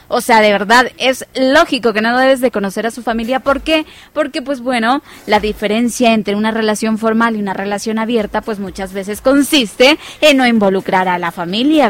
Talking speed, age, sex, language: 195 wpm, 20-39, female, Spanish